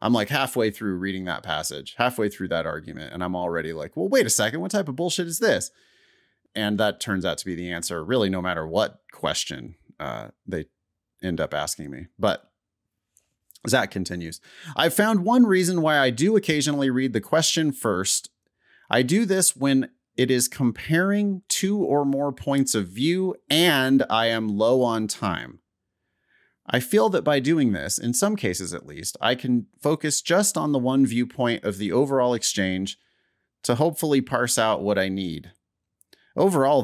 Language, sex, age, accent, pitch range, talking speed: English, male, 30-49, American, 95-140 Hz, 180 wpm